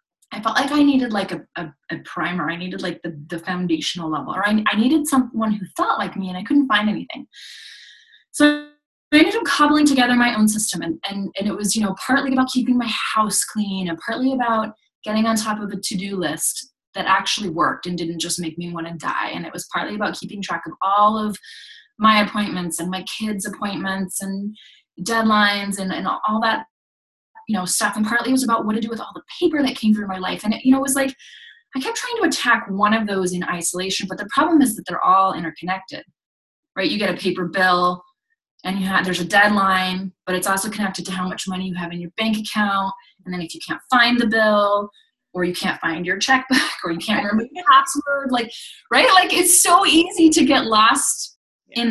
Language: English